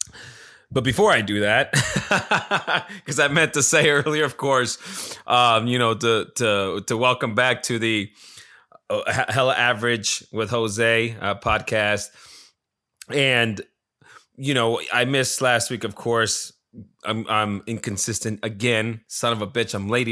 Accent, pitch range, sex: American, 105-125 Hz, male